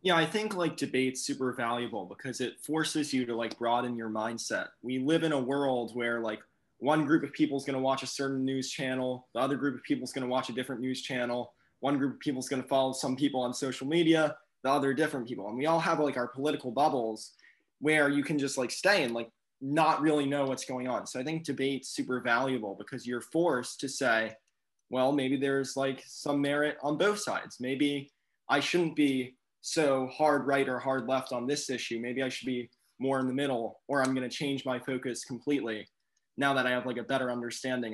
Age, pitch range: 20-39, 125-145 Hz